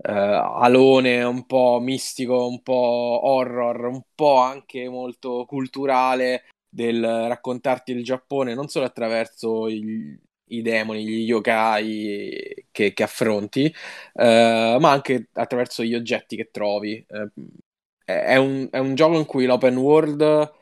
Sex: male